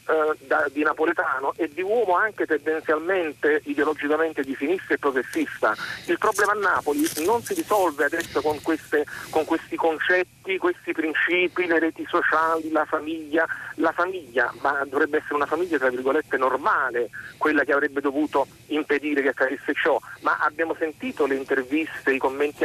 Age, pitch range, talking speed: 40-59, 145-195 Hz, 150 wpm